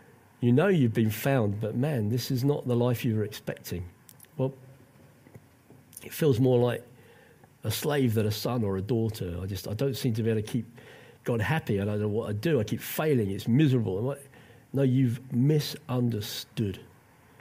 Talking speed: 185 wpm